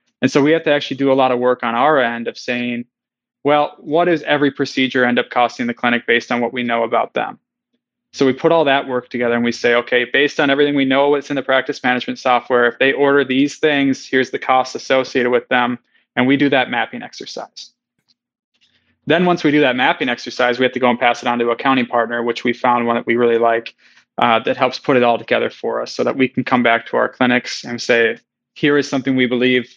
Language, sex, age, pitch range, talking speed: English, male, 20-39, 120-140 Hz, 250 wpm